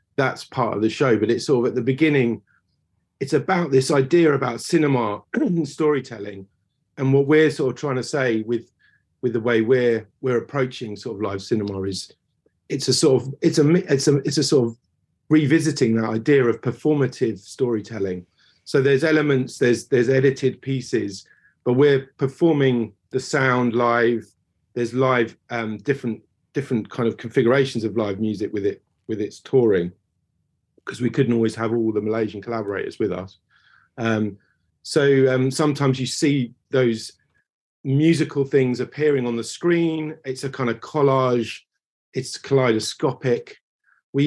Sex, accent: male, British